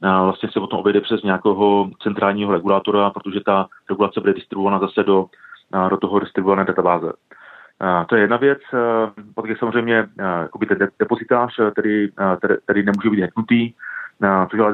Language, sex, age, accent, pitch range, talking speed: Czech, male, 30-49, native, 95-105 Hz, 145 wpm